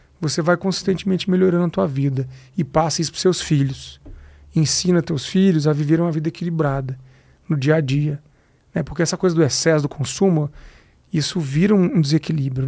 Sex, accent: male, Brazilian